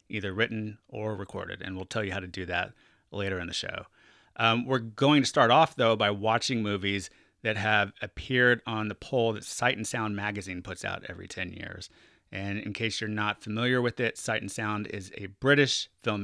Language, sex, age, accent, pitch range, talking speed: English, male, 30-49, American, 100-115 Hz, 205 wpm